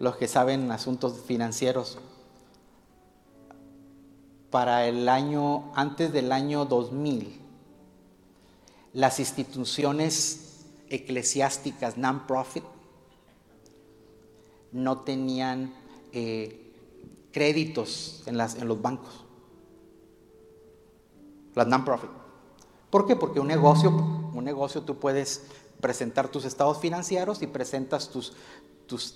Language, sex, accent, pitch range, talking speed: Spanish, male, Mexican, 120-145 Hz, 90 wpm